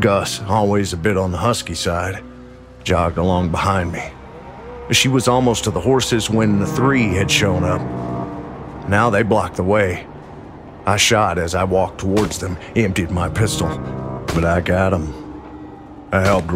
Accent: American